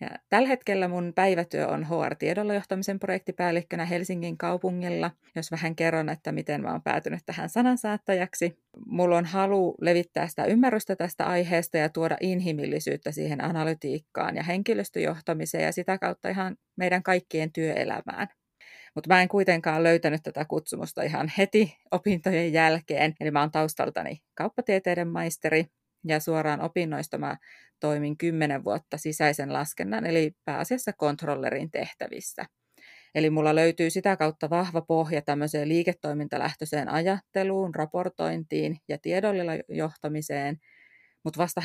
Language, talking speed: Finnish, 125 wpm